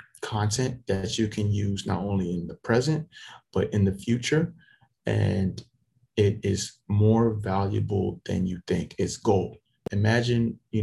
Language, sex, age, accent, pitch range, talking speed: English, male, 20-39, American, 100-115 Hz, 145 wpm